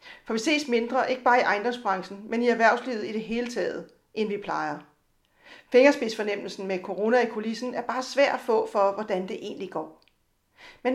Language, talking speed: Danish, 185 wpm